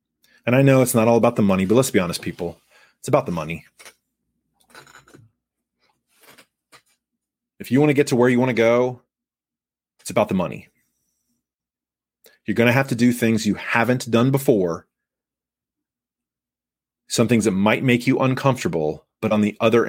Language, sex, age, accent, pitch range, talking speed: English, male, 30-49, American, 105-145 Hz, 165 wpm